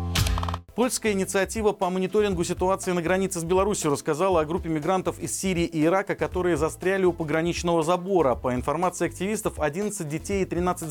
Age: 40-59